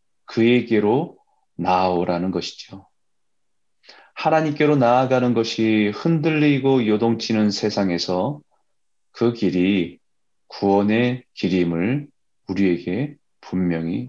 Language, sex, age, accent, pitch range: Korean, male, 30-49, native, 95-130 Hz